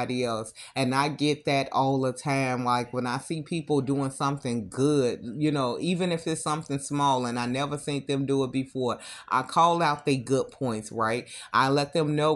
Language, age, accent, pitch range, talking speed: English, 30-49, American, 130-150 Hz, 205 wpm